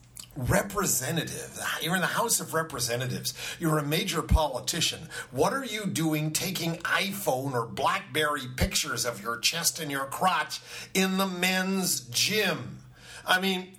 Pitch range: 150-230 Hz